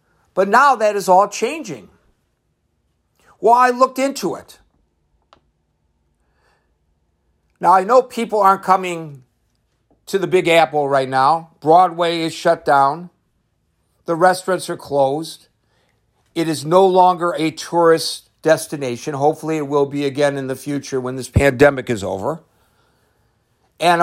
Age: 60-79